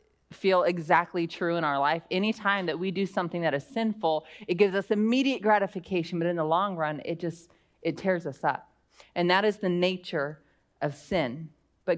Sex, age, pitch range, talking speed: female, 30-49, 160-190 Hz, 190 wpm